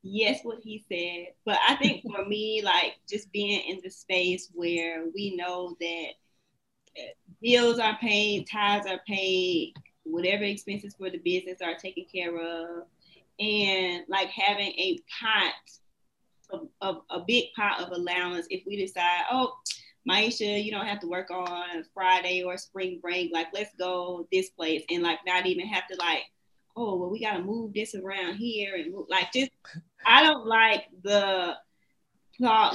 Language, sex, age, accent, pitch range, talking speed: English, female, 20-39, American, 180-240 Hz, 165 wpm